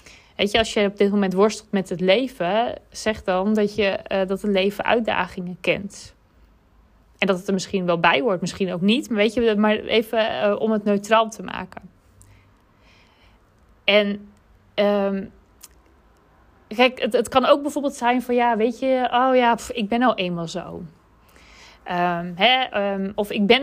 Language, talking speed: Dutch, 180 wpm